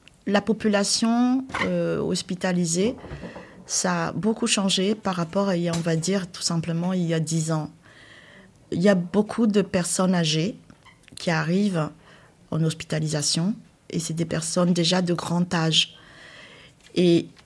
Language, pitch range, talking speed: French, 170-200 Hz, 140 wpm